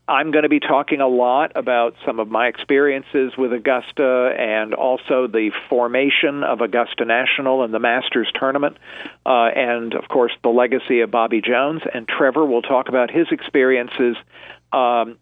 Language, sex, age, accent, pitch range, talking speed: English, male, 50-69, American, 120-140 Hz, 165 wpm